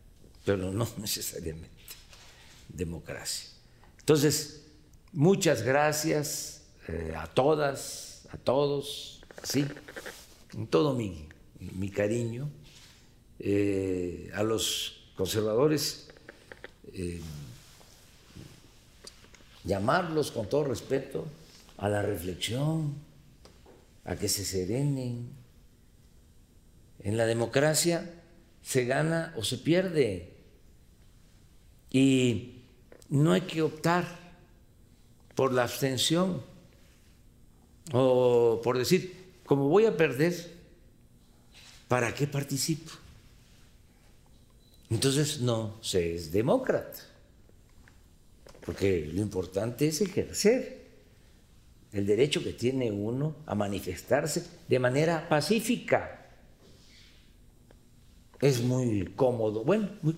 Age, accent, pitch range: 50-69, Mexican, 100-150 Hz